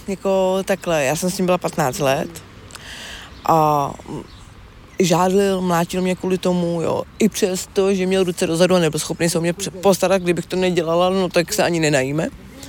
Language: Czech